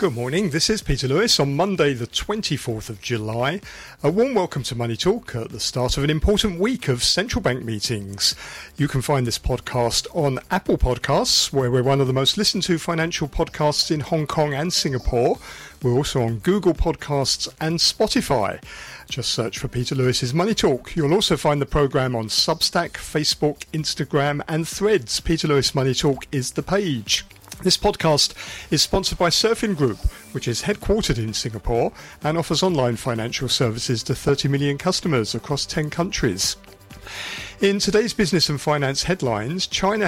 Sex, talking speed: male, 170 wpm